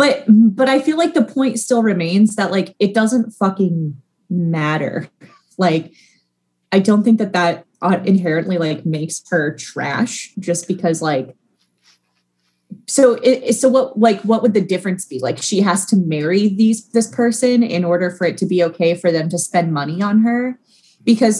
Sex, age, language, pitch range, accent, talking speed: female, 20-39, English, 160-205 Hz, American, 175 wpm